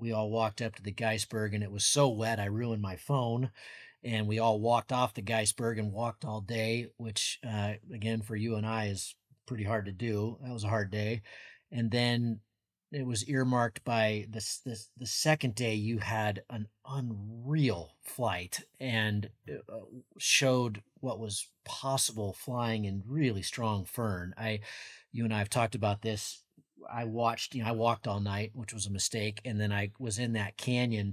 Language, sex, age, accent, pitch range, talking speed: English, male, 30-49, American, 105-120 Hz, 185 wpm